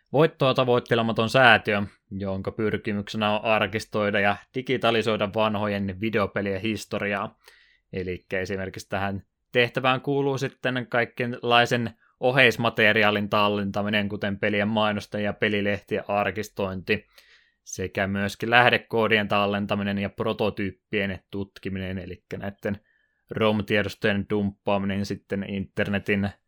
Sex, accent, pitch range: male, native, 100-110 Hz